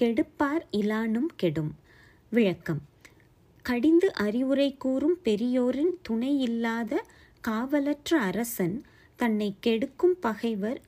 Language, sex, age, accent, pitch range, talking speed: Tamil, female, 30-49, native, 210-290 Hz, 85 wpm